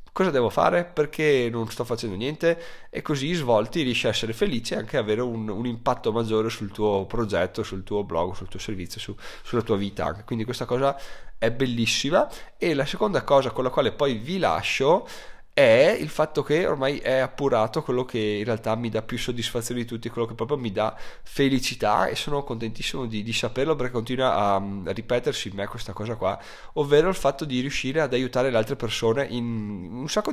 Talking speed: 205 wpm